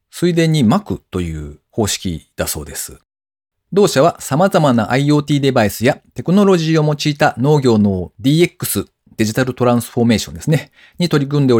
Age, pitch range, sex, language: 40-59, 95-145 Hz, male, Japanese